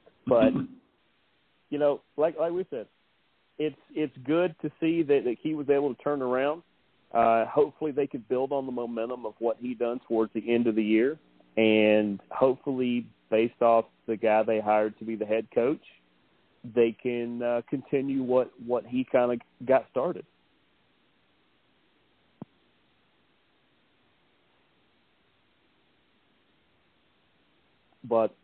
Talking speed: 135 wpm